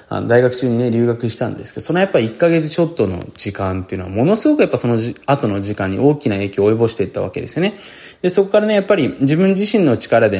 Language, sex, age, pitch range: Japanese, male, 20-39, 105-140 Hz